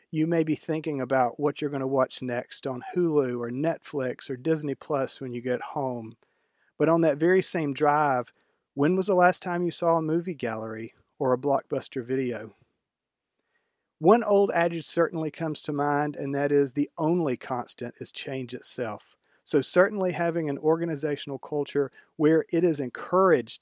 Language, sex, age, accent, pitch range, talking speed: English, male, 40-59, American, 130-180 Hz, 175 wpm